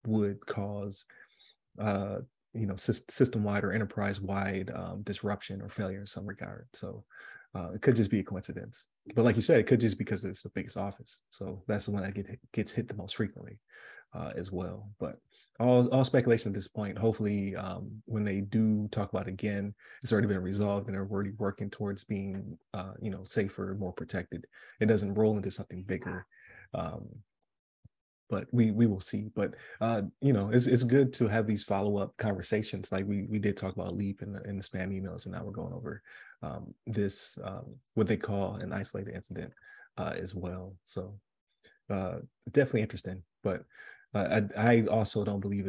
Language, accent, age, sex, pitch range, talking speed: English, American, 30-49, male, 95-110 Hz, 195 wpm